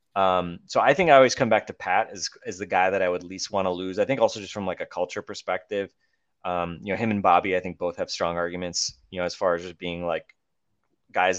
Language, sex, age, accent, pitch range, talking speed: English, male, 20-39, American, 85-95 Hz, 270 wpm